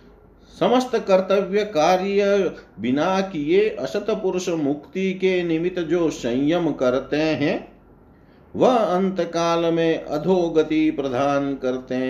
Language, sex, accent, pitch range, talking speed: Hindi, male, native, 125-185 Hz, 100 wpm